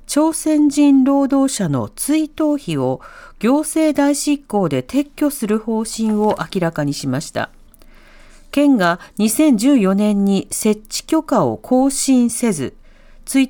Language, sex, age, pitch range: Japanese, female, 40-59, 185-270 Hz